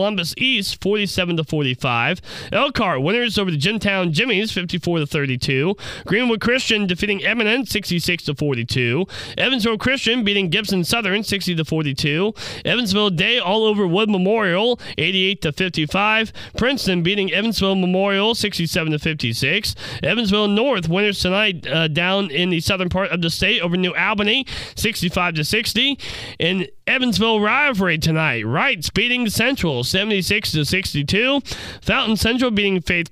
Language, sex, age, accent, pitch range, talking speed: English, male, 30-49, American, 170-220 Hz, 120 wpm